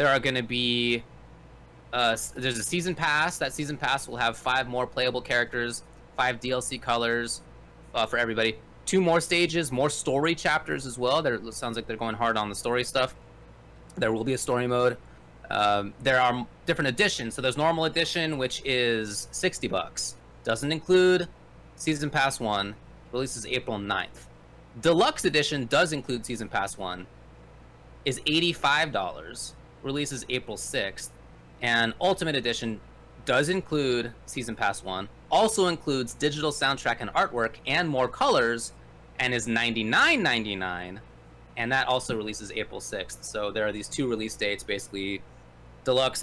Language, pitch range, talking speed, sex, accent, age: English, 105-135 Hz, 155 wpm, male, American, 20-39